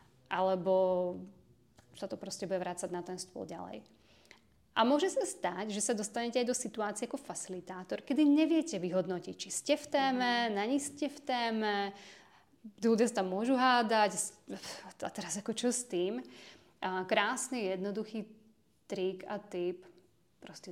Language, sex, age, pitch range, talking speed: Czech, female, 30-49, 185-215 Hz, 150 wpm